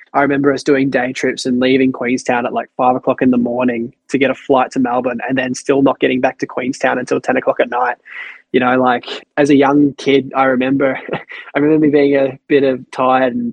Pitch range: 130-155 Hz